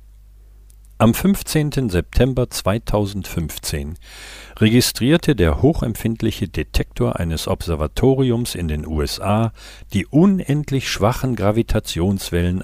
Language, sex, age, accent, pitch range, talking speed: German, male, 50-69, German, 85-110 Hz, 80 wpm